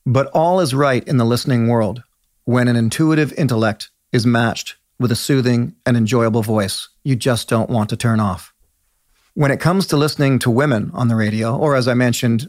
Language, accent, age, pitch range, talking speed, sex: English, American, 40-59, 115-140 Hz, 195 wpm, male